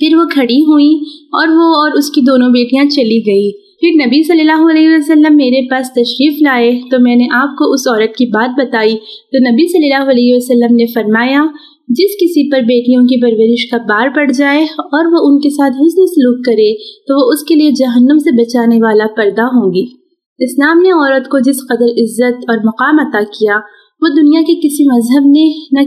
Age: 30-49